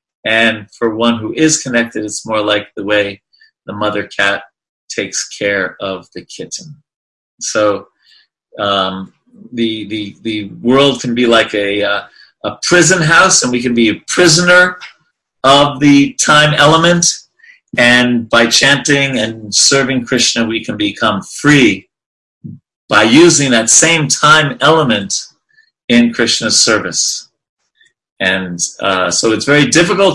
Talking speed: 135 wpm